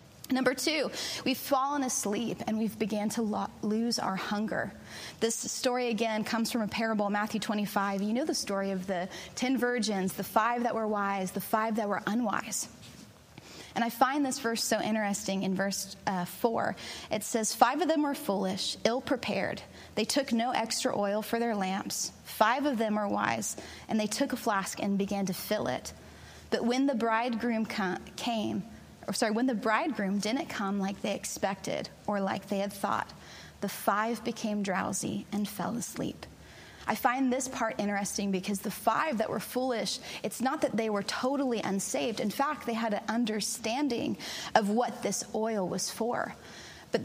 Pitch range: 200-240 Hz